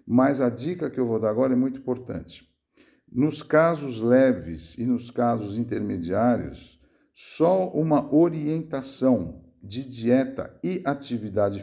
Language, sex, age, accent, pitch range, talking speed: Portuguese, male, 60-79, Brazilian, 115-140 Hz, 130 wpm